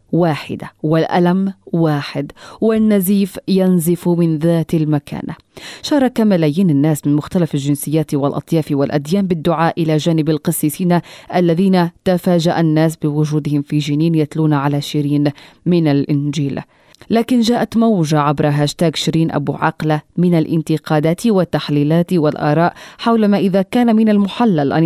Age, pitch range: 30-49, 150-195 Hz